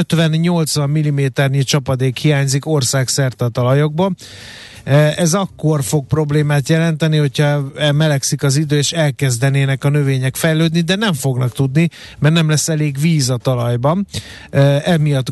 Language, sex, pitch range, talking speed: Hungarian, male, 135-155 Hz, 125 wpm